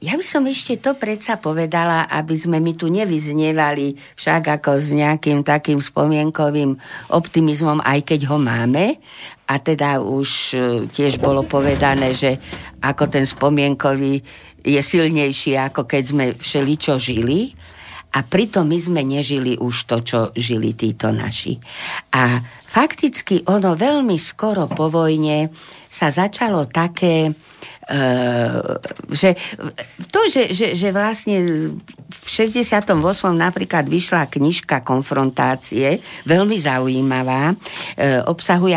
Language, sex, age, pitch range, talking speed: Slovak, female, 50-69, 135-170 Hz, 120 wpm